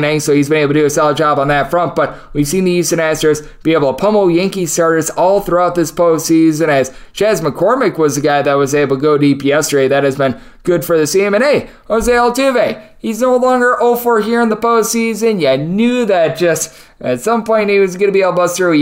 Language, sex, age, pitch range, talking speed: English, male, 20-39, 140-165 Hz, 240 wpm